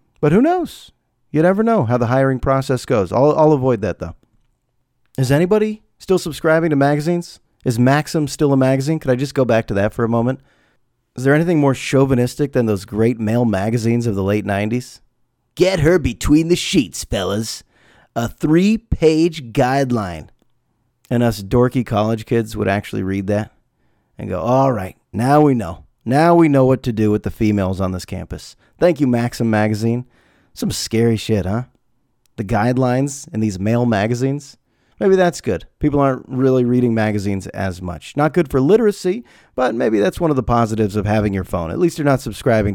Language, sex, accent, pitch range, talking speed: English, male, American, 110-140 Hz, 185 wpm